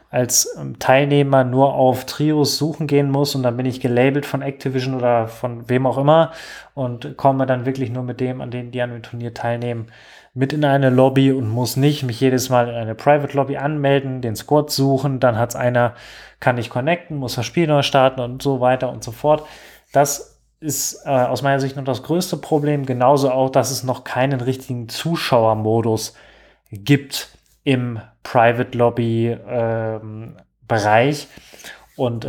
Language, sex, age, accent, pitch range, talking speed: German, male, 20-39, German, 120-135 Hz, 175 wpm